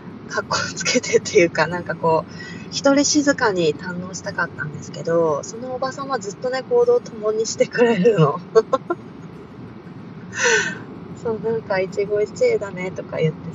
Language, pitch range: Japanese, 170-215 Hz